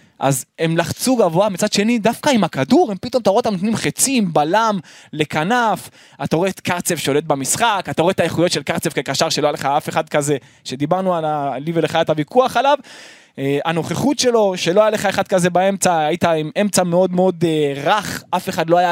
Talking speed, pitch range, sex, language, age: 205 wpm, 155-220 Hz, male, Hebrew, 20-39